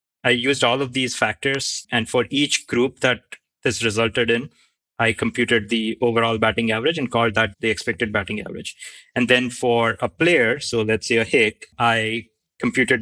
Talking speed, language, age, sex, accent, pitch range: 180 wpm, English, 20-39, male, Indian, 115-125 Hz